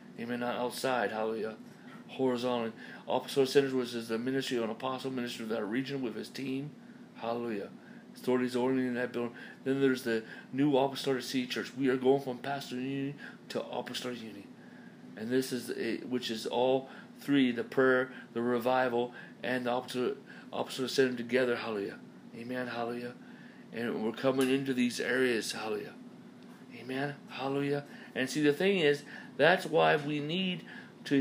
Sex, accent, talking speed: male, American, 160 wpm